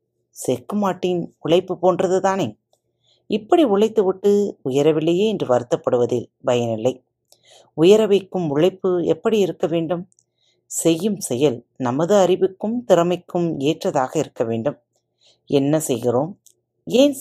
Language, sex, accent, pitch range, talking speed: Tamil, female, native, 130-195 Hz, 100 wpm